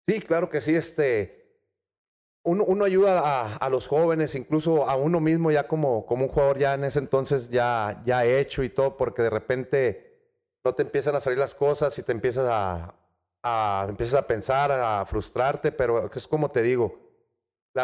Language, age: Spanish, 30-49